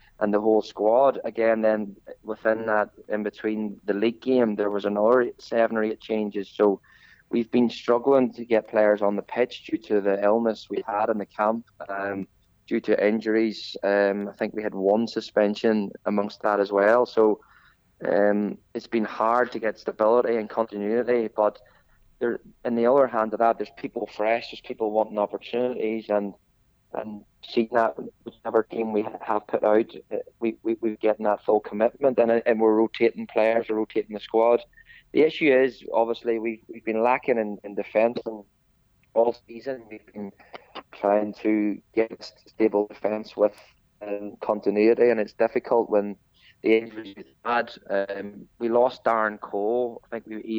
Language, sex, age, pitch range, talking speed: English, male, 20-39, 105-115 Hz, 170 wpm